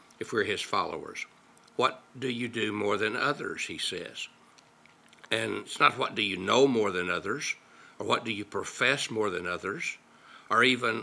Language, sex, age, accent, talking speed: English, male, 60-79, American, 180 wpm